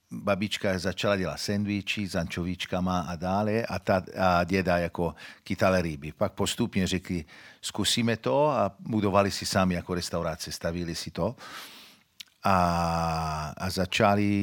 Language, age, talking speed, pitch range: Czech, 50-69, 125 wpm, 85-100 Hz